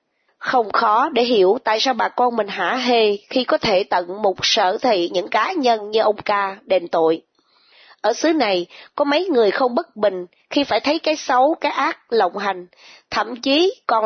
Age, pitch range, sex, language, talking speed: 20-39, 200-255 Hz, female, Vietnamese, 200 wpm